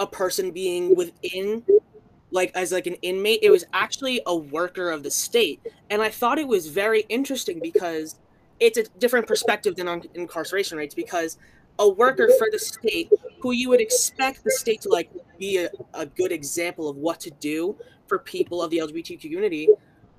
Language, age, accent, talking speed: English, 20-39, American, 185 wpm